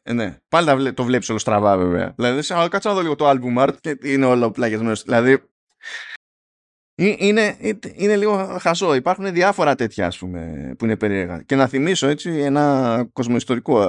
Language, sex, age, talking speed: Greek, male, 20-39, 175 wpm